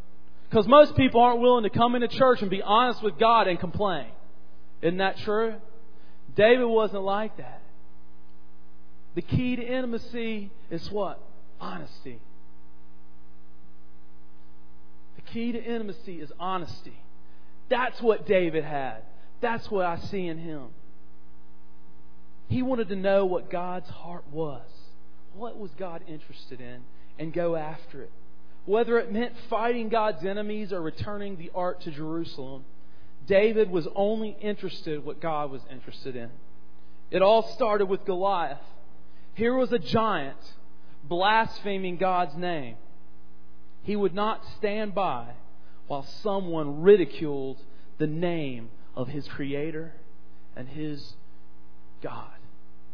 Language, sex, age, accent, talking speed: English, male, 40-59, American, 130 wpm